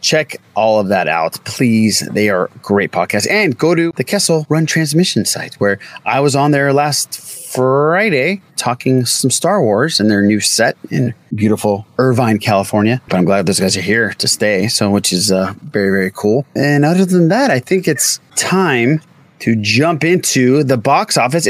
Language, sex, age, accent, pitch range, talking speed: English, male, 30-49, American, 110-160 Hz, 185 wpm